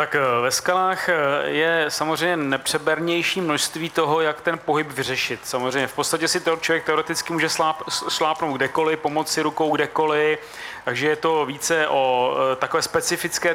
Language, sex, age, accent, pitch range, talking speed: Czech, male, 30-49, native, 145-160 Hz, 140 wpm